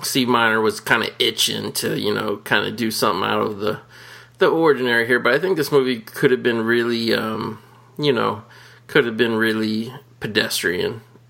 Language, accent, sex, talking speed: English, American, male, 190 wpm